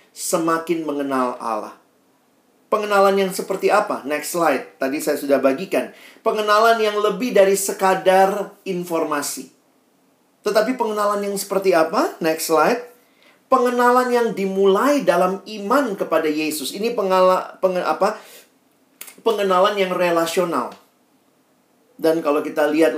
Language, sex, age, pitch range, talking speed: Indonesian, male, 40-59, 145-210 Hz, 115 wpm